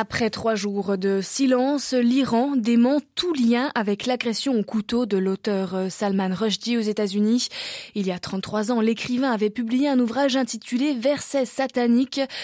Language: French